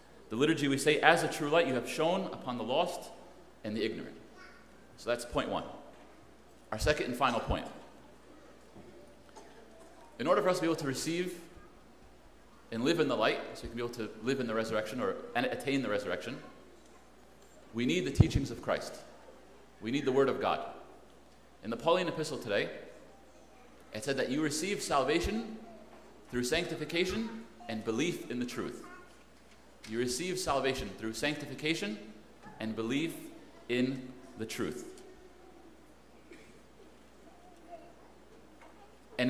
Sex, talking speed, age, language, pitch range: male, 145 wpm, 30-49, English, 125-180 Hz